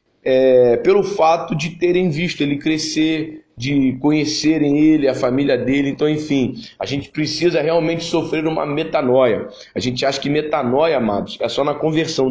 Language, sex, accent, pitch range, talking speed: Portuguese, male, Brazilian, 140-170 Hz, 160 wpm